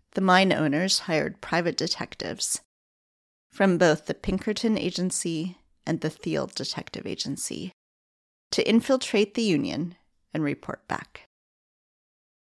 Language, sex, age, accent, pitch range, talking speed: English, female, 40-59, American, 155-195 Hz, 110 wpm